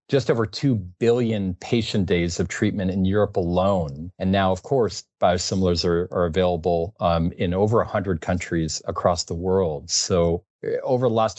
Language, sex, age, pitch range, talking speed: English, male, 40-59, 90-110 Hz, 170 wpm